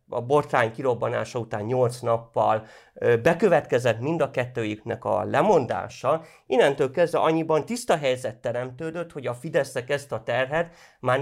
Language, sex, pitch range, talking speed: English, male, 115-140 Hz, 135 wpm